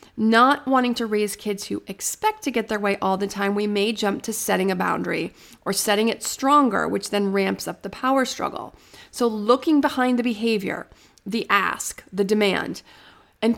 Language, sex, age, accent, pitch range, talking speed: English, female, 30-49, American, 205-255 Hz, 185 wpm